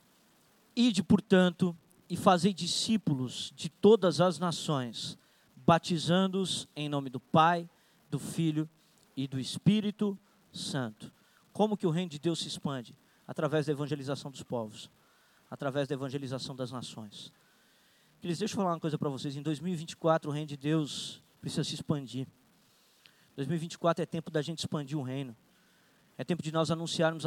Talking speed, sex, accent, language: 145 wpm, male, Brazilian, Portuguese